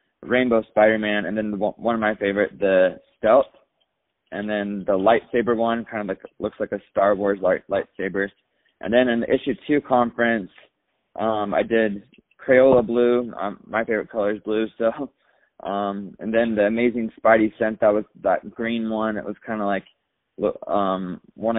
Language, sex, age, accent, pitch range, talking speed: English, male, 20-39, American, 100-115 Hz, 180 wpm